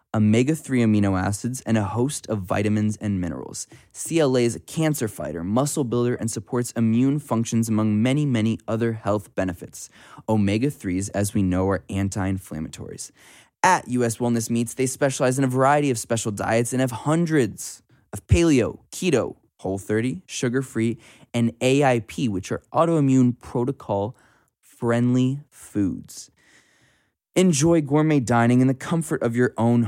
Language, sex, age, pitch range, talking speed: English, male, 20-39, 105-130 Hz, 140 wpm